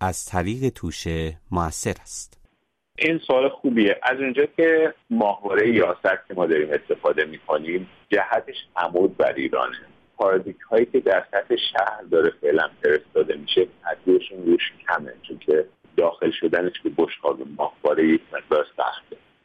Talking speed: 140 wpm